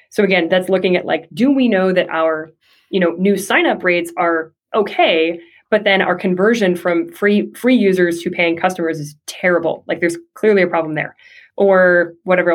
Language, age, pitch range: English, 20-39, 170-200 Hz